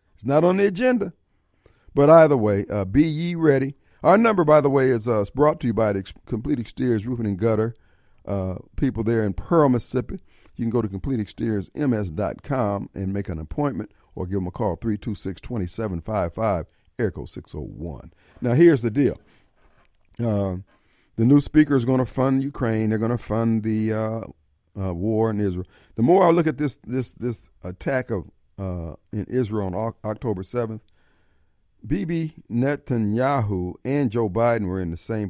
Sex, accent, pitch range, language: male, American, 95-125 Hz, English